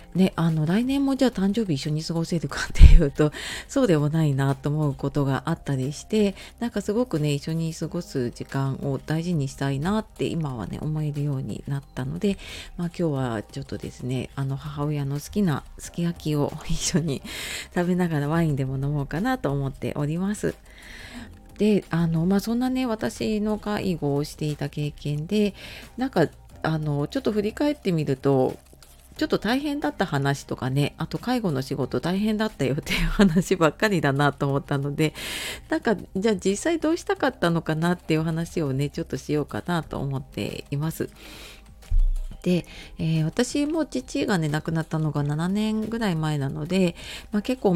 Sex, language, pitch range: female, Japanese, 140-195 Hz